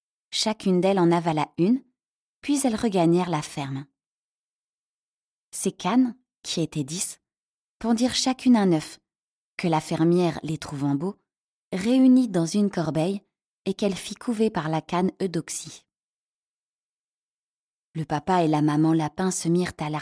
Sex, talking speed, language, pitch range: female, 140 wpm, French, 165-220 Hz